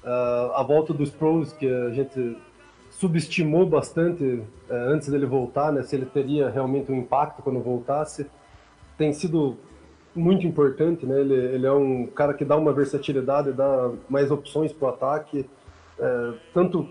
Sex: male